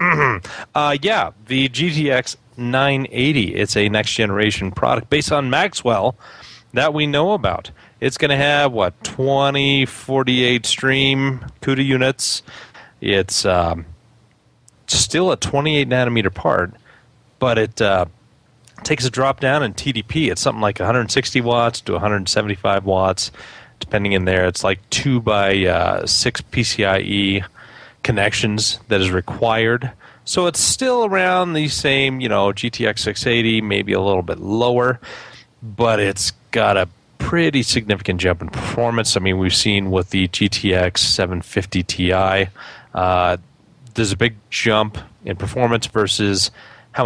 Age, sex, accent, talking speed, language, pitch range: 30-49, male, American, 130 wpm, English, 95-130 Hz